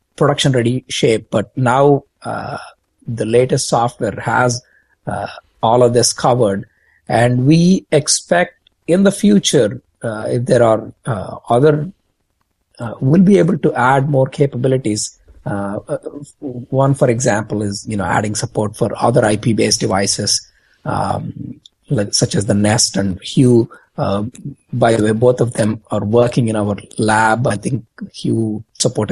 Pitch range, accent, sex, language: 105-140 Hz, Indian, male, English